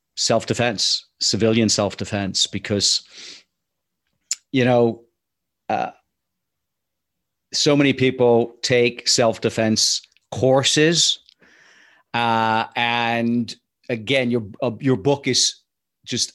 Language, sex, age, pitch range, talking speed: English, male, 40-59, 110-125 Hz, 80 wpm